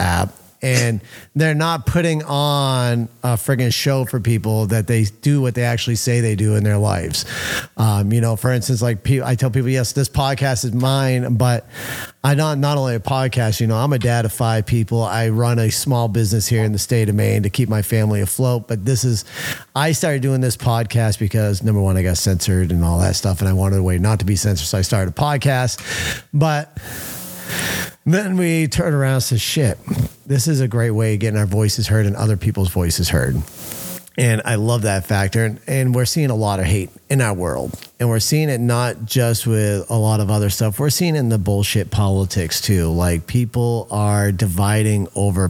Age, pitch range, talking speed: 40-59, 100-125 Hz, 215 wpm